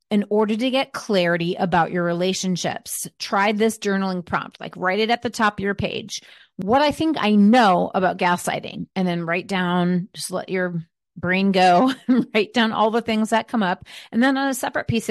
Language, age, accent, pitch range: English, 30-49, American, 185-230 Hz